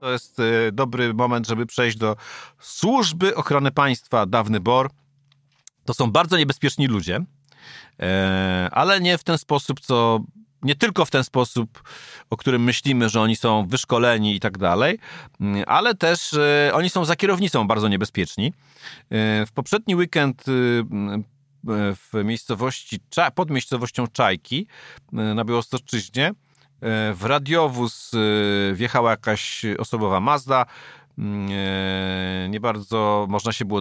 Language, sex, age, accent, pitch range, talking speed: Polish, male, 40-59, native, 105-145 Hz, 120 wpm